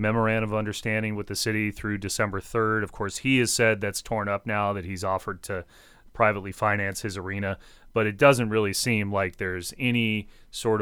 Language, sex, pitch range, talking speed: English, male, 100-110 Hz, 195 wpm